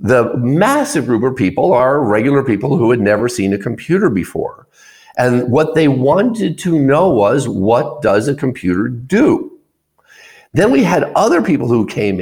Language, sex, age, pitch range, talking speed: English, male, 50-69, 120-165 Hz, 165 wpm